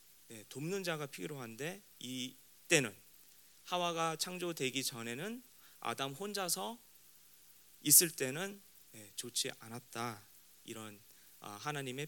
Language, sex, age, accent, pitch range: Korean, male, 30-49, native, 110-165 Hz